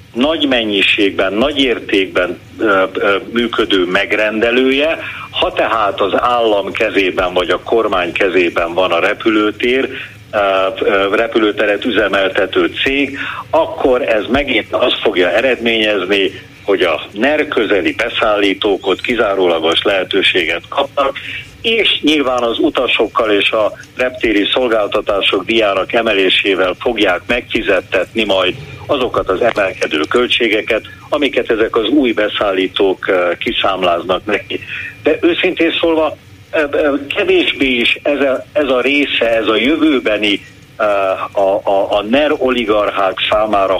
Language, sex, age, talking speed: Hungarian, male, 50-69, 110 wpm